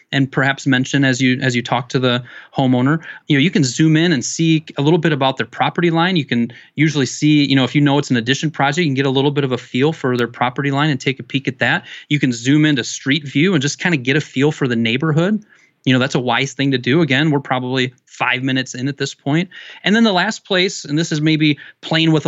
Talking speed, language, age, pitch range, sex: 275 wpm, English, 30-49, 135-170 Hz, male